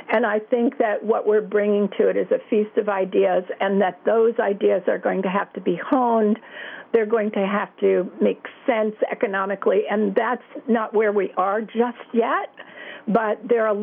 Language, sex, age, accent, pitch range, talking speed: English, female, 60-79, American, 195-235 Hz, 195 wpm